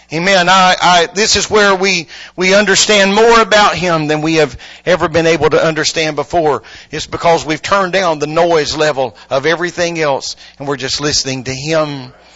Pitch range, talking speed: 135-195 Hz, 185 wpm